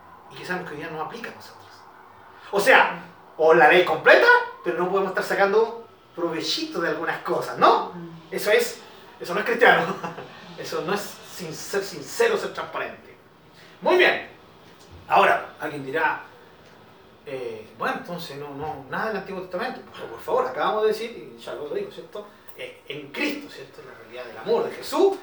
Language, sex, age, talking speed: Spanish, male, 30-49, 180 wpm